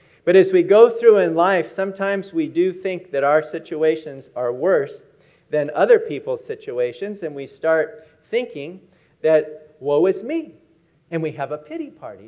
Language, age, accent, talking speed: English, 50-69, American, 165 wpm